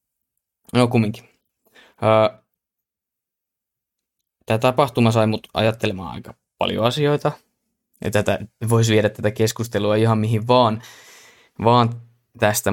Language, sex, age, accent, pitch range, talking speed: Finnish, male, 20-39, native, 105-115 Hz, 100 wpm